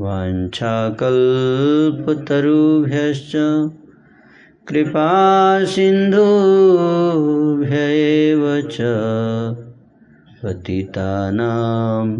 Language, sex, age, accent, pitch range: Hindi, male, 30-49, native, 115-155 Hz